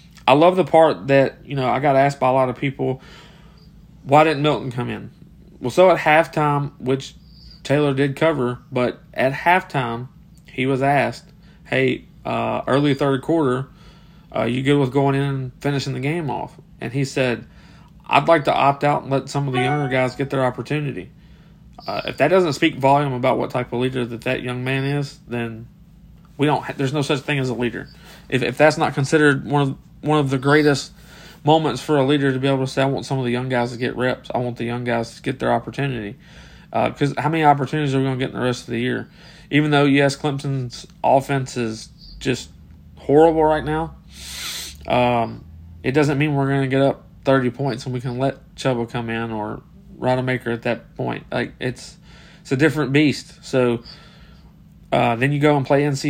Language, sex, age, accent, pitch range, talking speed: English, male, 40-59, American, 125-155 Hz, 210 wpm